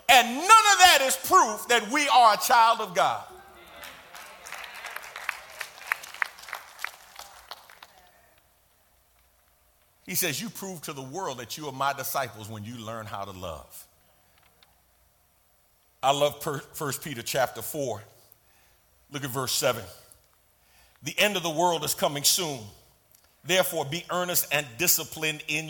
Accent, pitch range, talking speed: American, 115-175 Hz, 130 wpm